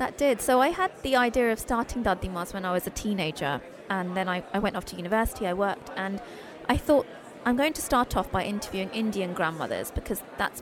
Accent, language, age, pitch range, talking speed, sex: British, English, 20-39, 195-240 Hz, 220 wpm, female